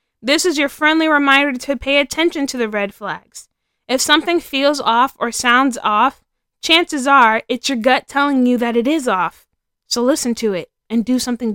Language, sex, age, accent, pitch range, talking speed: English, female, 20-39, American, 225-270 Hz, 190 wpm